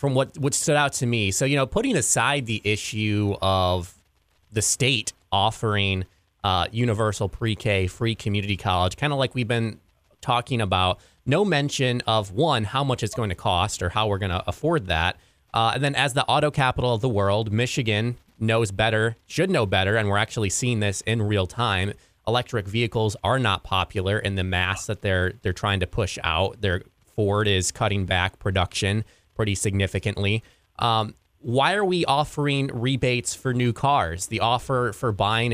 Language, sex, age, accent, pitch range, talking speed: English, male, 20-39, American, 100-120 Hz, 180 wpm